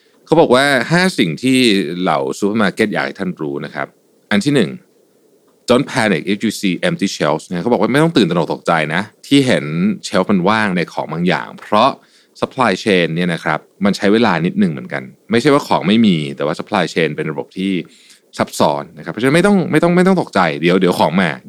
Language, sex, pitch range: Thai, male, 85-125 Hz